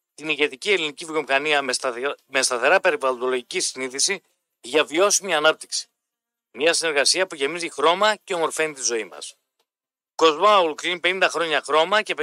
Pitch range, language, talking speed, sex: 155-195 Hz, Greek, 135 wpm, male